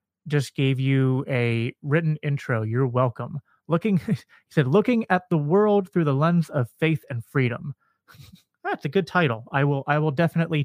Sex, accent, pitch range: male, American, 120-160 Hz